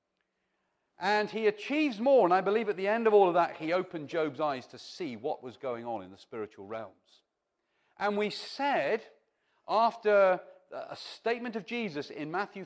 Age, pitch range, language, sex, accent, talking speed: 40-59, 155-225 Hz, English, male, British, 180 wpm